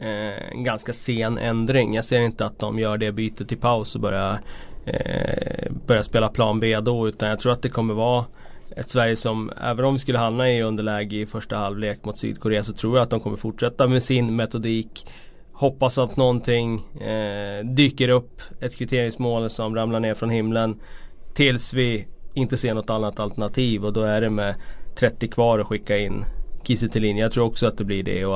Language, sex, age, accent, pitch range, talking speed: Swedish, male, 20-39, native, 105-125 Hz, 200 wpm